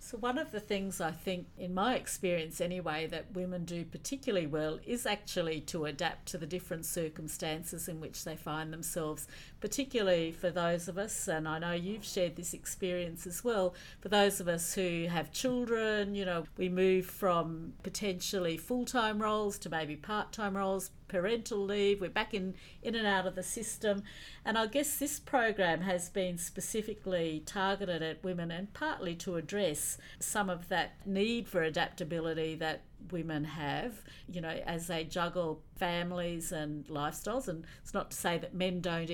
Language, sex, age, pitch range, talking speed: English, female, 50-69, 165-205 Hz, 175 wpm